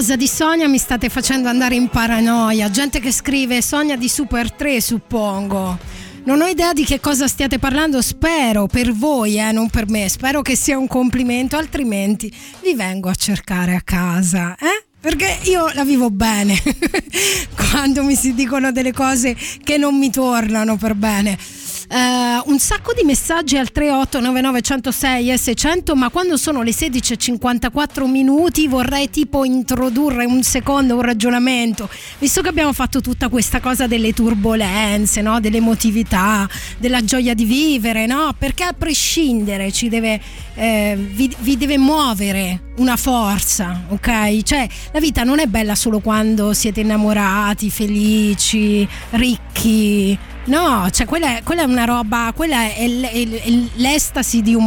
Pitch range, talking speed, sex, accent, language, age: 220-280 Hz, 150 wpm, female, native, Italian, 20-39